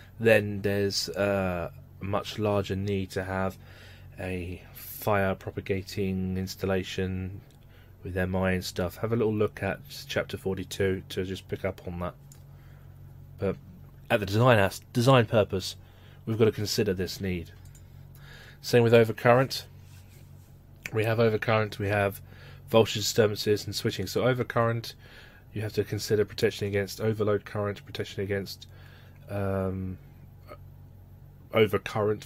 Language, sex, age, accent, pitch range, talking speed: English, male, 30-49, British, 95-115 Hz, 130 wpm